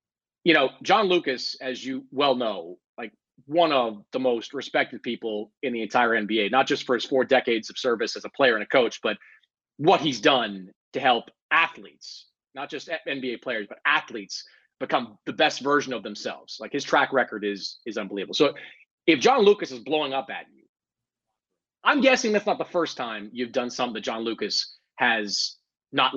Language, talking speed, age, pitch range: English, 190 wpm, 30-49, 125-165 Hz